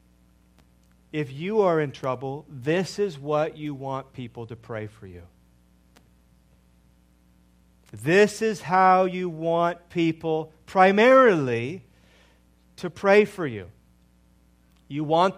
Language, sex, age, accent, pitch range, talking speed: English, male, 40-59, American, 115-195 Hz, 110 wpm